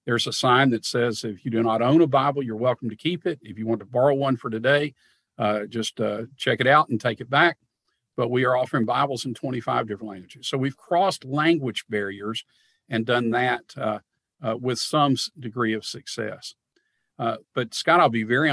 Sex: male